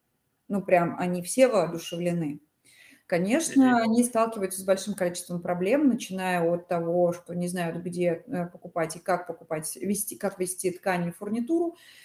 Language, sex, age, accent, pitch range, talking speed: Russian, female, 30-49, native, 175-215 Hz, 140 wpm